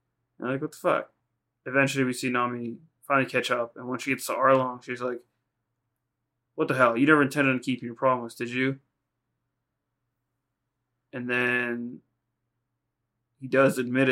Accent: American